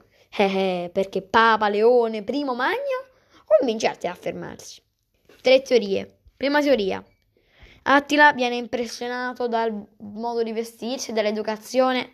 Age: 20-39